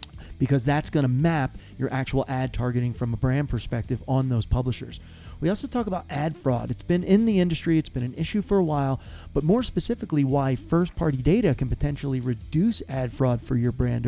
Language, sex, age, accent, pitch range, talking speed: English, male, 30-49, American, 120-150 Hz, 205 wpm